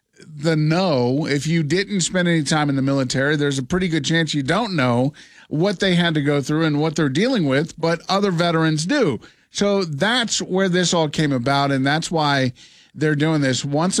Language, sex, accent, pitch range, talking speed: English, male, American, 145-180 Hz, 205 wpm